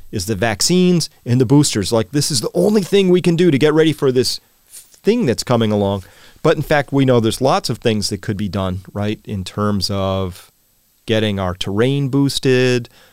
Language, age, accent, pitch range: English, 40-59, American, 105-145 Hz